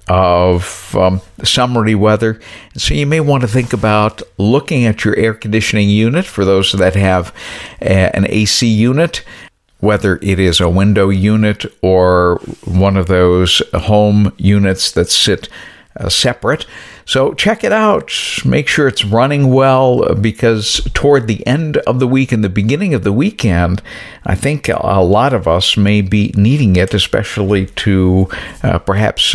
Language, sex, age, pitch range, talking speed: English, male, 60-79, 95-130 Hz, 155 wpm